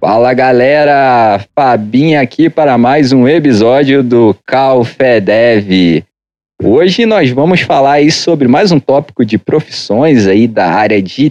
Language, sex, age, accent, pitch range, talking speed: Portuguese, male, 40-59, Brazilian, 125-165 Hz, 135 wpm